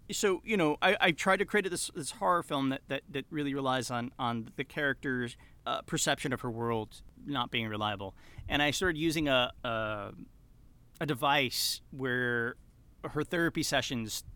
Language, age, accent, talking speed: English, 30-49, American, 170 wpm